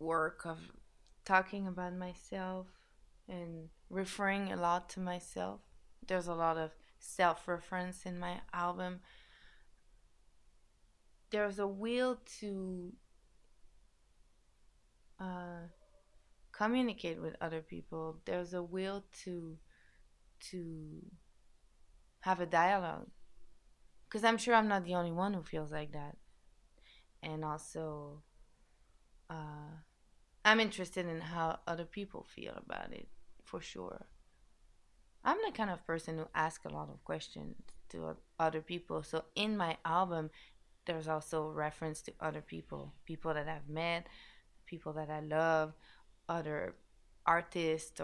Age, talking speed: 20-39, 120 wpm